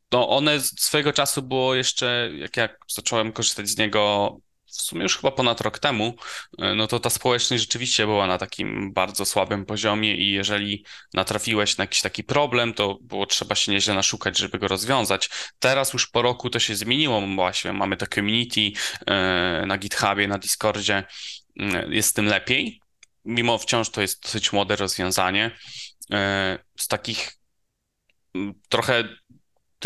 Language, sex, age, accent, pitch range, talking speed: Polish, male, 20-39, native, 100-115 Hz, 155 wpm